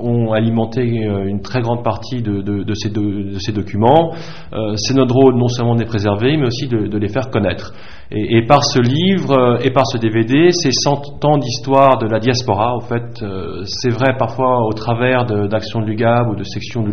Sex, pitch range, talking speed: male, 105-130 Hz, 220 wpm